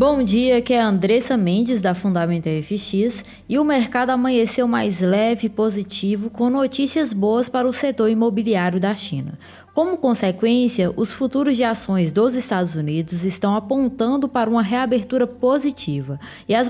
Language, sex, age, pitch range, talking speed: Portuguese, female, 20-39, 205-260 Hz, 155 wpm